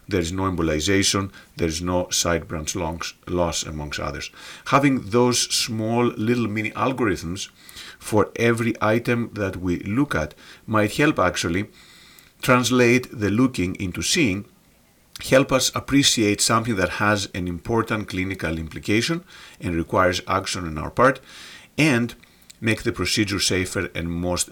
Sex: male